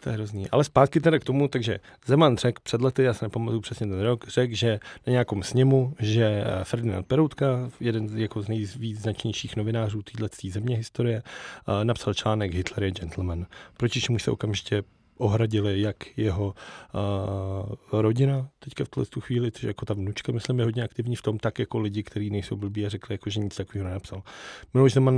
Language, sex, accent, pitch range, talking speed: Czech, male, native, 105-125 Hz, 195 wpm